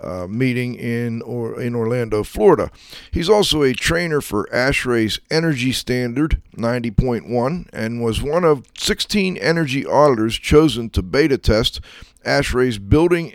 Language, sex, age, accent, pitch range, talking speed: English, male, 50-69, American, 115-150 Hz, 125 wpm